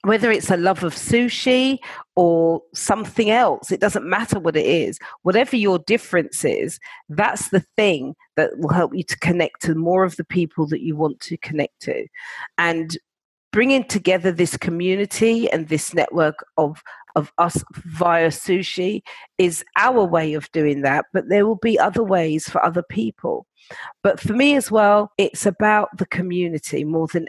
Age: 40-59